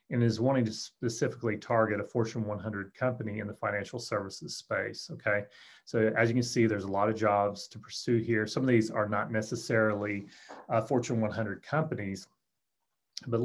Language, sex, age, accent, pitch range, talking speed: English, male, 30-49, American, 105-120 Hz, 180 wpm